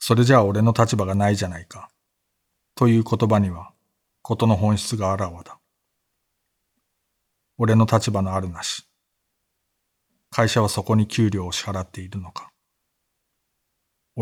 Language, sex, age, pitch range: Japanese, male, 50-69, 95-115 Hz